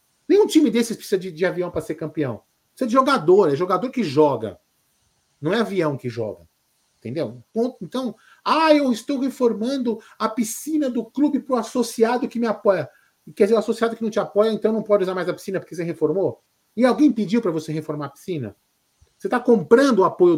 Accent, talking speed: Brazilian, 205 wpm